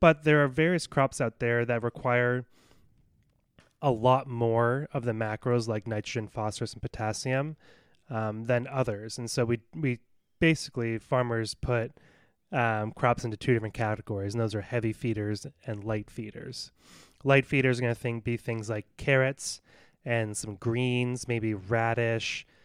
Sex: male